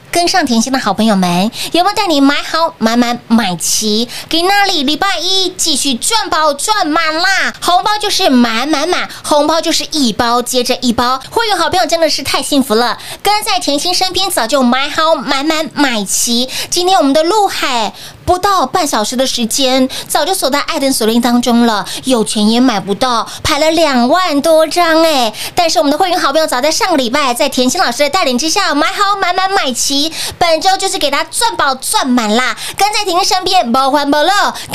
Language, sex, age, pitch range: Chinese, female, 20-39, 250-360 Hz